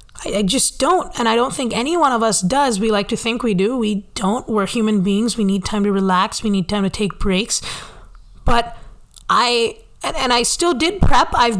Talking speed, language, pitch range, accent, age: 215 wpm, English, 210-260 Hz, American, 20-39